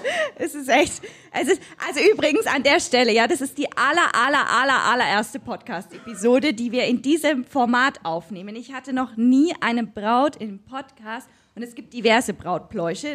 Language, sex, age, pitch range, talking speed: German, female, 20-39, 205-265 Hz, 175 wpm